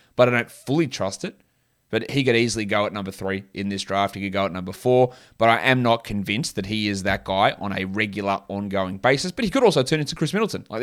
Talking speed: 260 wpm